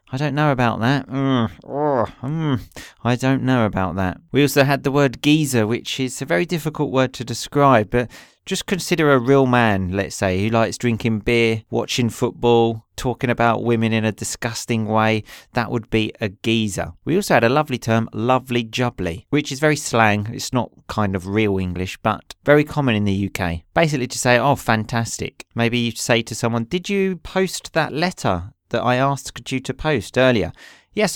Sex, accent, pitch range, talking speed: male, British, 110-140 Hz, 190 wpm